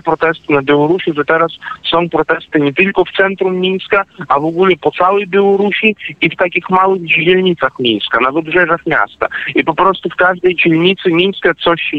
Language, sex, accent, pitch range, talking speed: Polish, male, native, 155-185 Hz, 180 wpm